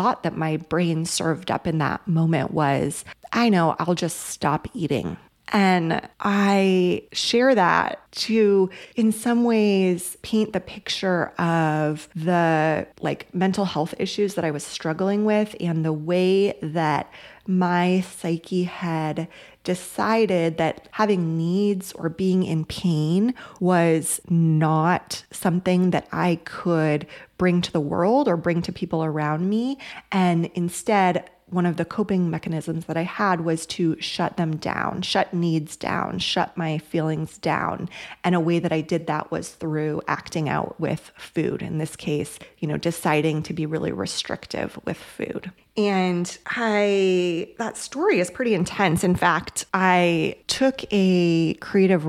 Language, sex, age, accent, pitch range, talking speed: English, female, 30-49, American, 160-190 Hz, 145 wpm